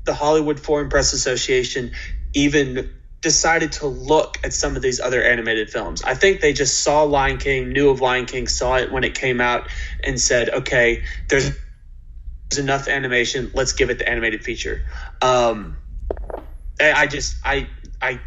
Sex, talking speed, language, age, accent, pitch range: male, 165 wpm, English, 20-39, American, 120-145 Hz